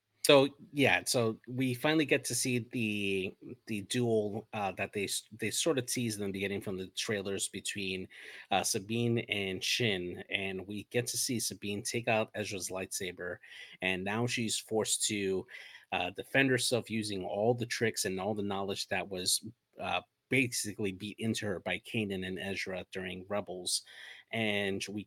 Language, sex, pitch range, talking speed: English, male, 95-115 Hz, 165 wpm